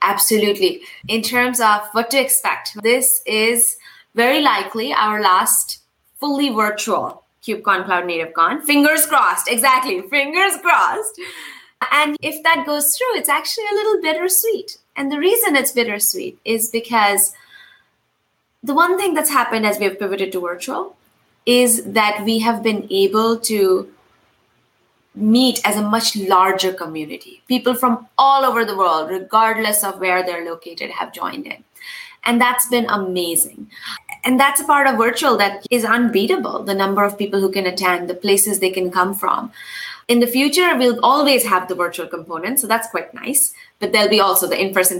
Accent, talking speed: Indian, 165 wpm